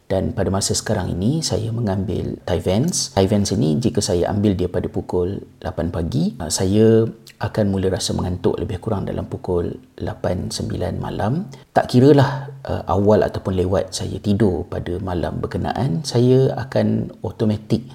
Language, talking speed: Malay, 145 wpm